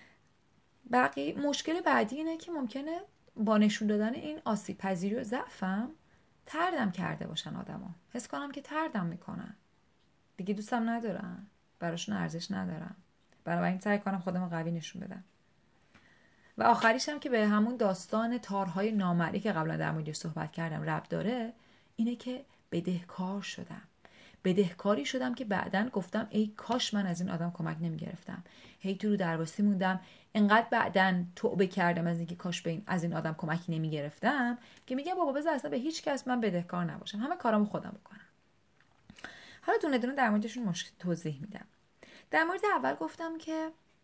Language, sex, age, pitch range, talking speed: Persian, female, 30-49, 180-245 Hz, 155 wpm